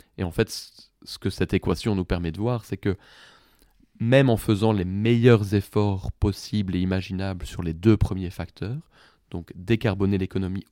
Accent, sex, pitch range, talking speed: French, male, 95-115 Hz, 170 wpm